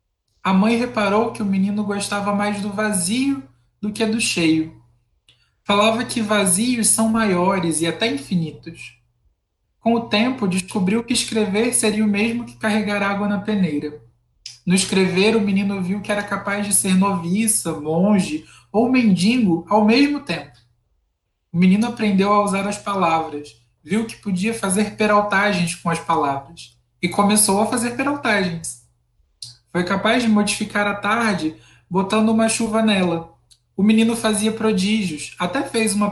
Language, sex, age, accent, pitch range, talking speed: Portuguese, male, 20-39, Brazilian, 155-215 Hz, 150 wpm